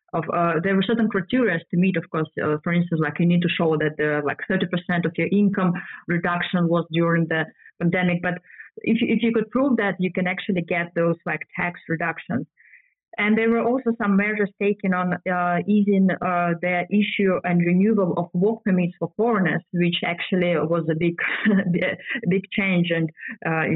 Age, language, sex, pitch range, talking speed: 20-39, English, female, 170-205 Hz, 190 wpm